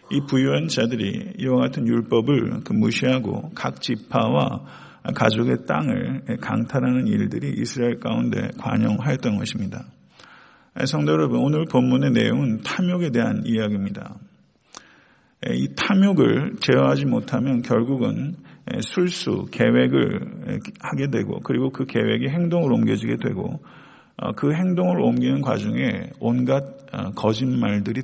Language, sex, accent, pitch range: Korean, male, native, 110-145 Hz